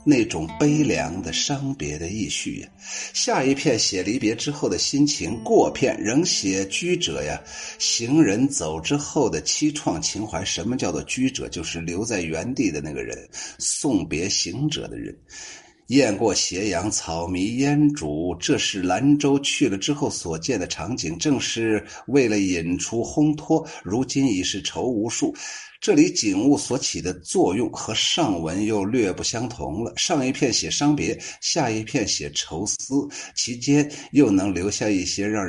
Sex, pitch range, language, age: male, 100-150 Hz, Chinese, 50-69